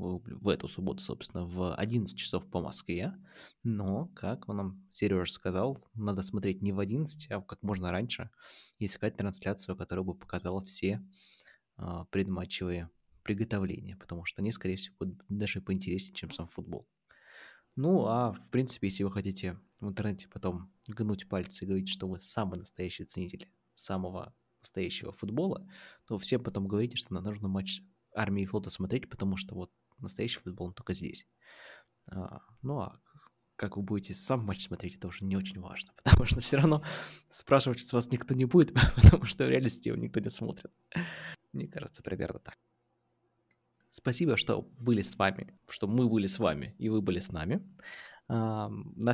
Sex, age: male, 20-39